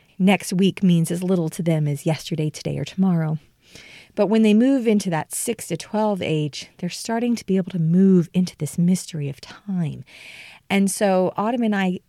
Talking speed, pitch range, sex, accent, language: 195 wpm, 165-210 Hz, female, American, English